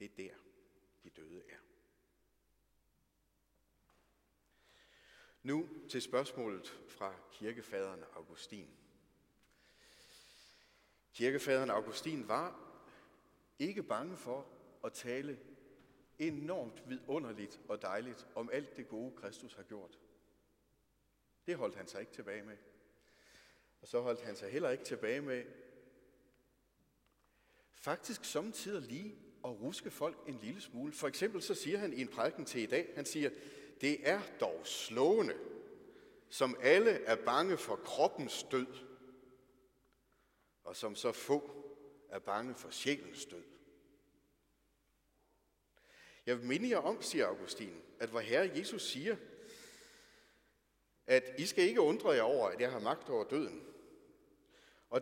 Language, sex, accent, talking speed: Danish, male, native, 125 wpm